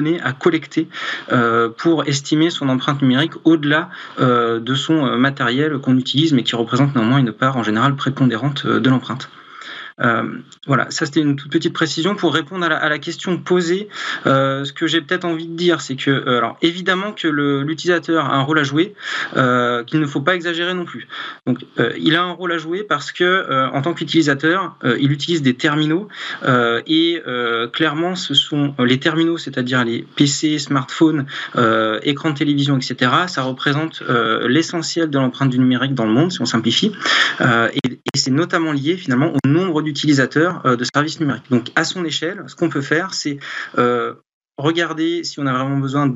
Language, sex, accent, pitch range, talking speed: French, male, French, 130-165 Hz, 185 wpm